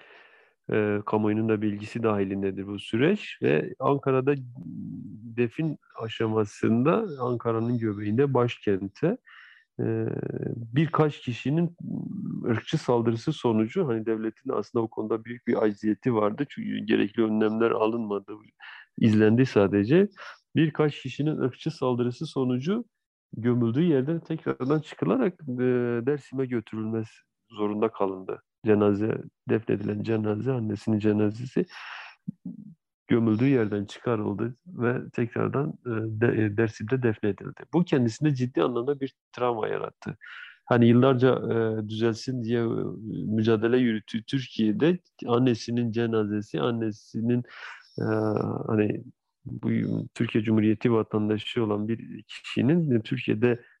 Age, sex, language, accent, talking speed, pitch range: 40-59, male, Turkish, native, 105 wpm, 110-135 Hz